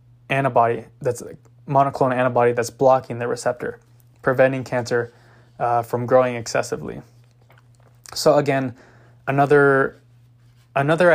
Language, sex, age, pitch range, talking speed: English, male, 20-39, 120-135 Hz, 110 wpm